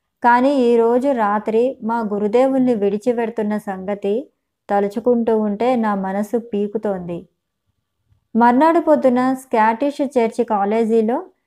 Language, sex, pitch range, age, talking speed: Telugu, male, 215-265 Hz, 20-39, 90 wpm